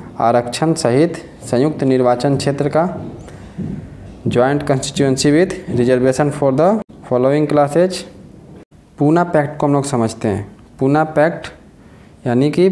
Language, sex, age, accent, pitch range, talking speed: English, male, 20-39, Indian, 125-160 Hz, 115 wpm